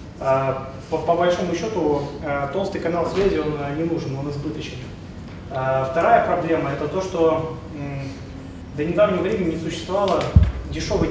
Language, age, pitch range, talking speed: Russian, 30-49, 135-170 Hz, 125 wpm